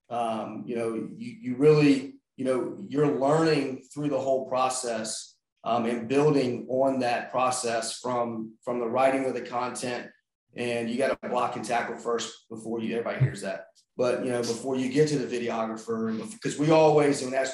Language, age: English, 30-49